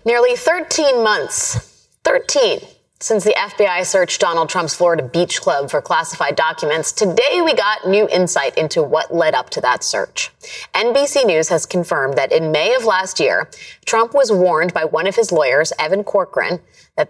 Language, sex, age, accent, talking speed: English, female, 30-49, American, 170 wpm